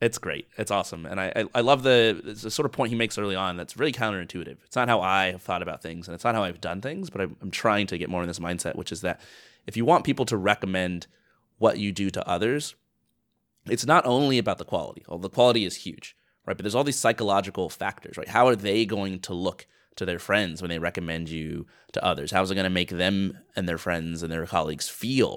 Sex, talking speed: male, 250 wpm